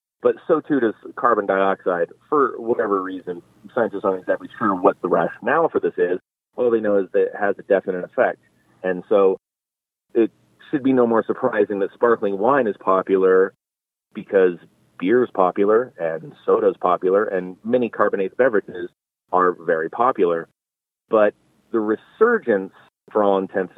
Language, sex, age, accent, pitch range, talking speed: English, male, 30-49, American, 95-120 Hz, 160 wpm